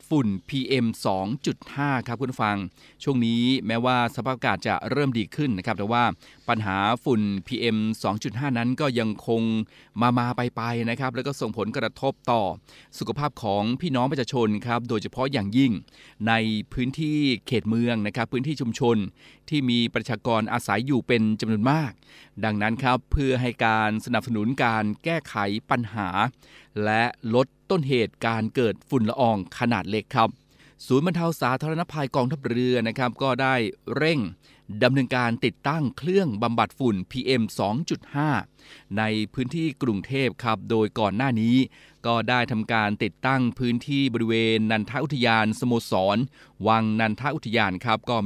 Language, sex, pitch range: Thai, male, 110-130 Hz